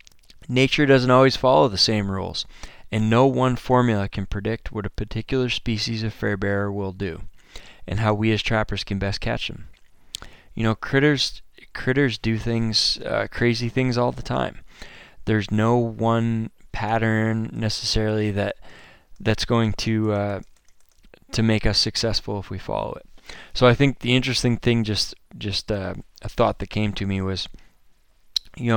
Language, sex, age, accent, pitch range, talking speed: English, male, 20-39, American, 100-120 Hz, 165 wpm